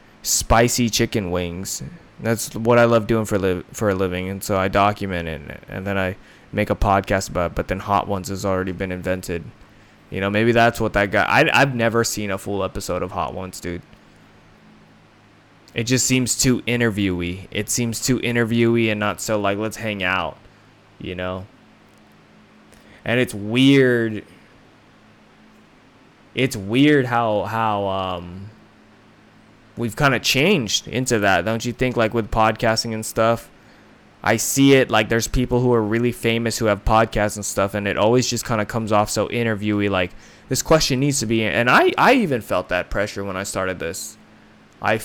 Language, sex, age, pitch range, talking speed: English, male, 20-39, 100-125 Hz, 180 wpm